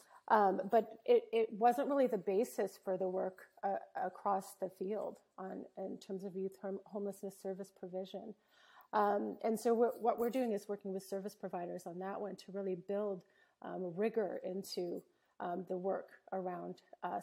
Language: English